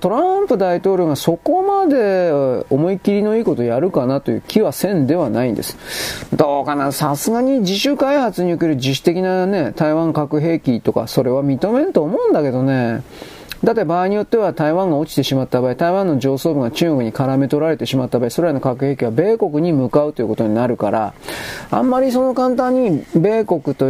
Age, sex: 40-59, male